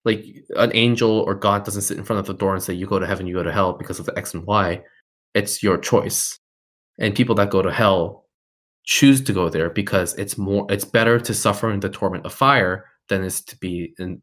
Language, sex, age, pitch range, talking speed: English, male, 20-39, 95-115 Hz, 245 wpm